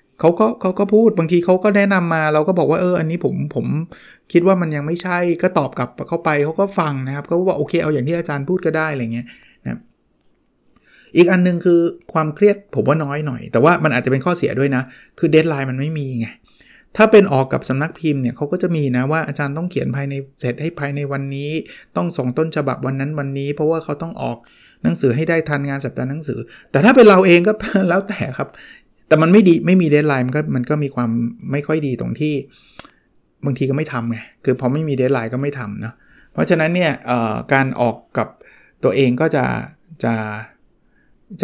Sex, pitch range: male, 125-170 Hz